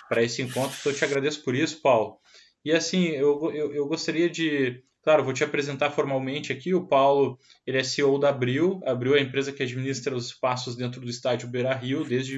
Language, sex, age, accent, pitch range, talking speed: Portuguese, male, 20-39, Brazilian, 120-140 Hz, 215 wpm